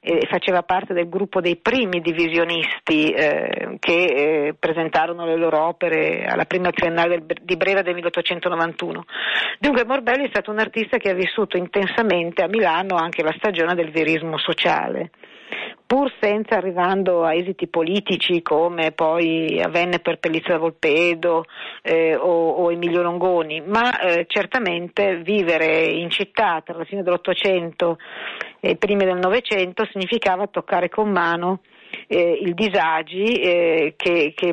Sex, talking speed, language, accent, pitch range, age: female, 140 wpm, Italian, native, 170-195 Hz, 50-69